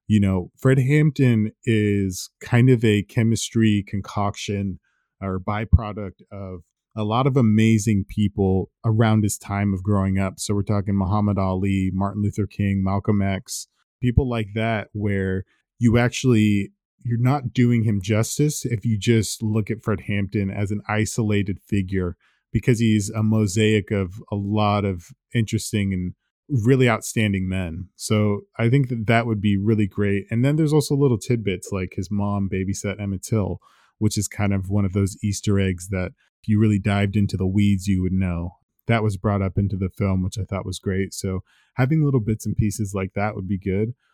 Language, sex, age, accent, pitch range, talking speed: English, male, 20-39, American, 100-115 Hz, 180 wpm